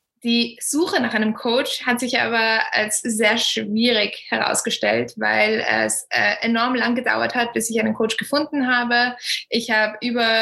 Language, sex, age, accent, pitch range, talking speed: German, female, 20-39, German, 215-240 Hz, 155 wpm